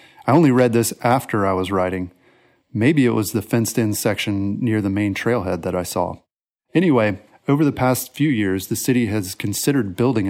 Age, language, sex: 30-49, English, male